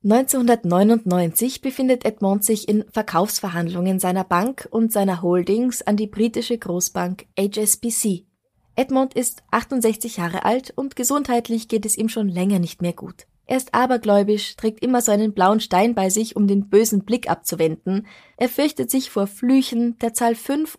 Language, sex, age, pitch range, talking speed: German, female, 20-39, 190-235 Hz, 155 wpm